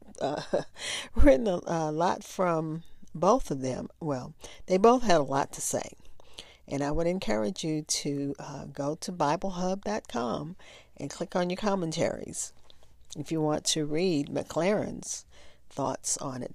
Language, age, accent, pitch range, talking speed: English, 50-69, American, 145-175 Hz, 145 wpm